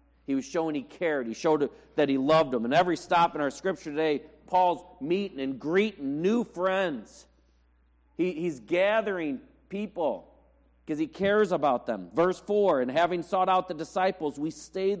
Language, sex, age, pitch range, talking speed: English, male, 40-59, 140-185 Hz, 170 wpm